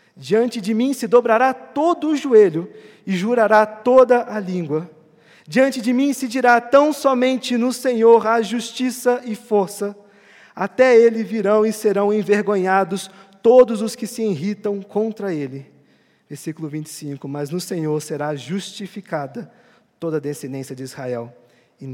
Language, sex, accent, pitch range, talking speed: Portuguese, male, Brazilian, 160-250 Hz, 140 wpm